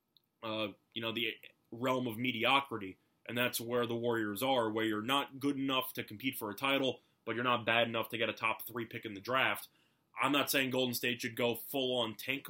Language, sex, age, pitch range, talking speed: English, male, 20-39, 110-130 Hz, 220 wpm